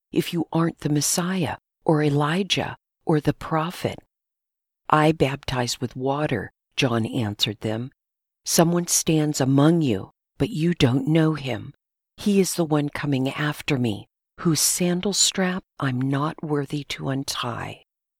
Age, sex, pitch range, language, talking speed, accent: 50-69, female, 130-160 Hz, English, 135 wpm, American